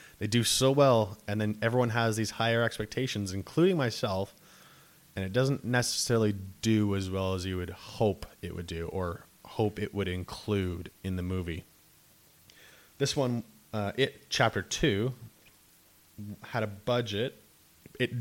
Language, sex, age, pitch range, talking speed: English, male, 20-39, 95-120 Hz, 150 wpm